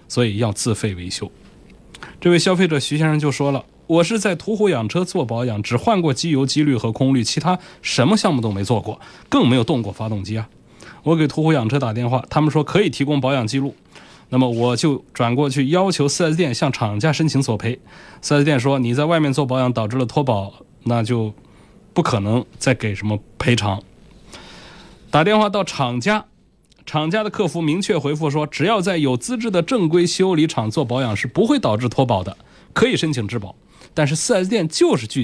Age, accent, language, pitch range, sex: 20-39, native, Chinese, 110-155 Hz, male